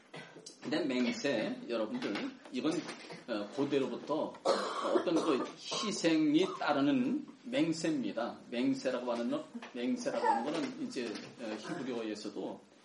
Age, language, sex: 40-59, Korean, male